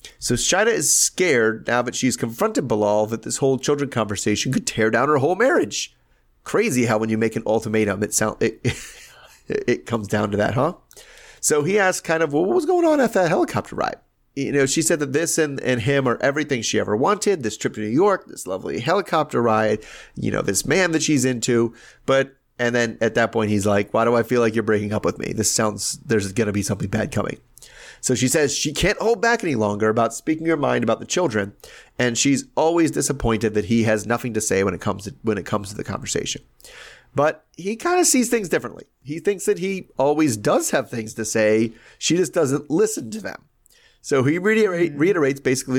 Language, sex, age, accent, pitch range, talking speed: English, male, 30-49, American, 110-150 Hz, 230 wpm